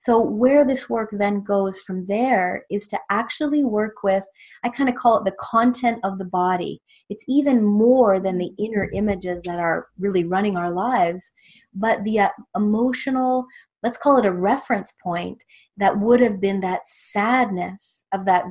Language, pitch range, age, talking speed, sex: English, 190-235 Hz, 30-49, 175 wpm, female